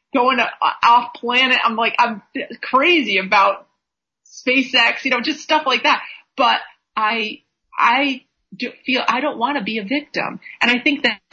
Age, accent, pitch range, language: 30-49, American, 205-265 Hz, English